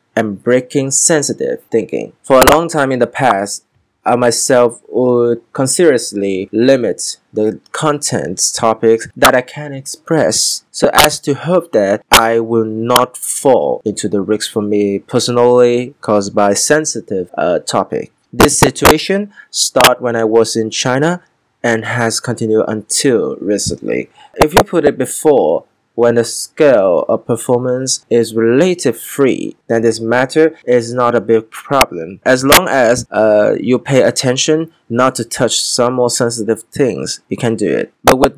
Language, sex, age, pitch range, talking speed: Vietnamese, male, 20-39, 115-140 Hz, 150 wpm